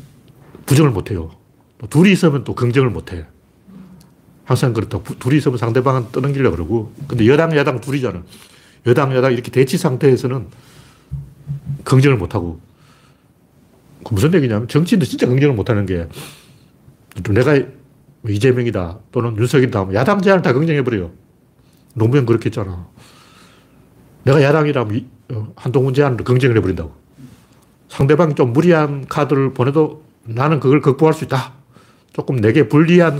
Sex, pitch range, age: male, 120-150 Hz, 40-59